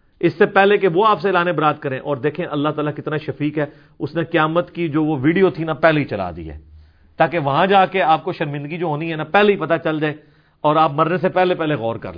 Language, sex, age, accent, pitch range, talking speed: English, male, 40-59, Indian, 110-160 Hz, 265 wpm